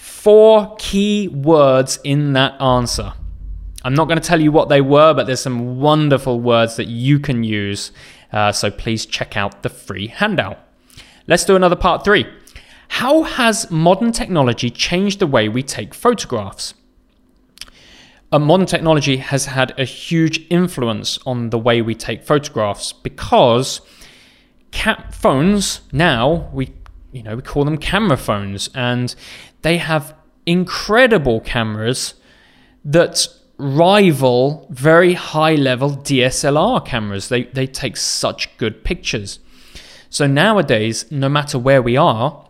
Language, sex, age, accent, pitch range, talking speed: English, male, 20-39, British, 120-160 Hz, 135 wpm